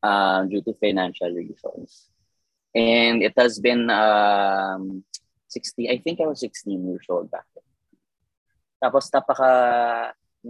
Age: 20-39